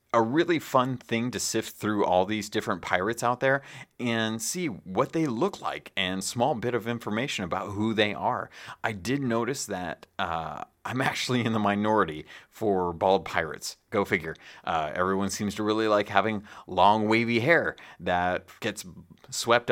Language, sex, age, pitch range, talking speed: English, male, 30-49, 95-120 Hz, 170 wpm